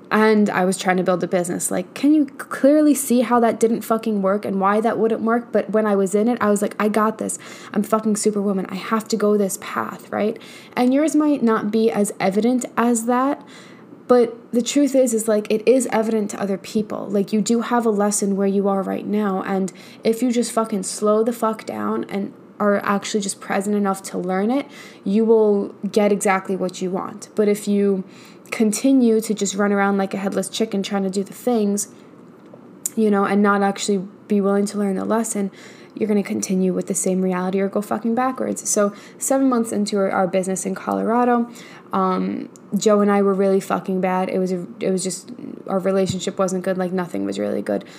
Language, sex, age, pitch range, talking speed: English, female, 10-29, 190-220 Hz, 220 wpm